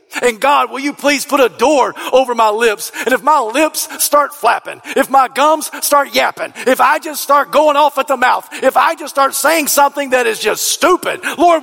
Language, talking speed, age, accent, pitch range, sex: English, 215 wpm, 50-69, American, 220-295 Hz, male